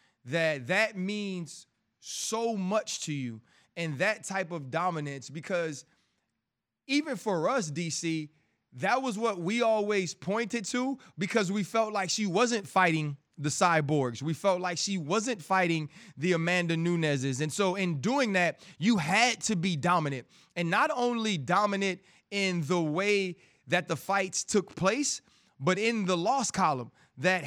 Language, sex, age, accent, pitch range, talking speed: English, male, 30-49, American, 170-220 Hz, 155 wpm